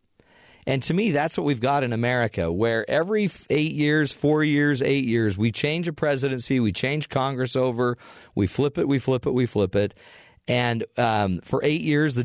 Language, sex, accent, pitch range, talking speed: English, male, American, 105-140 Hz, 195 wpm